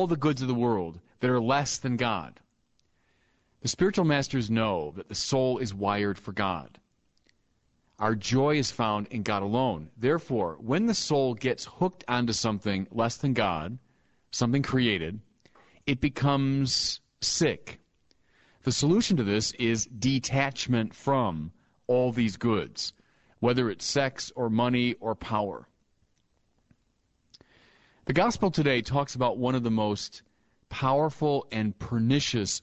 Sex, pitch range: male, 105-135 Hz